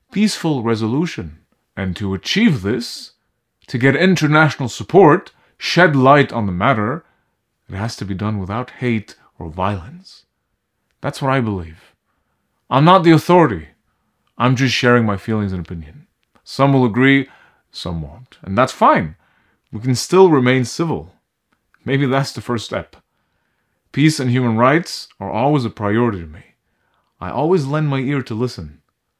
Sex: male